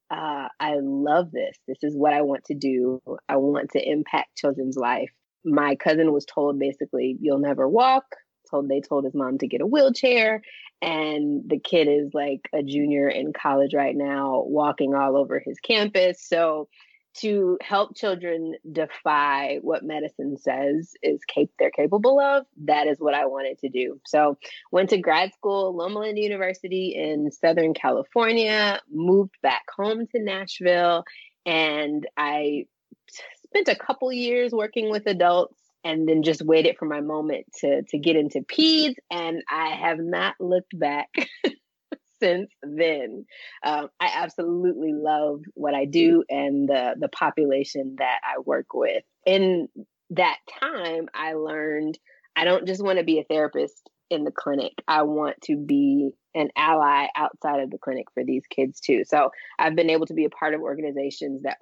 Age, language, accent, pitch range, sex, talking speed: 20-39, English, American, 145-195 Hz, female, 165 wpm